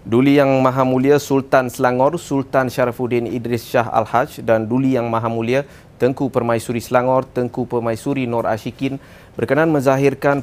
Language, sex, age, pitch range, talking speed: Malay, male, 20-39, 110-130 Hz, 145 wpm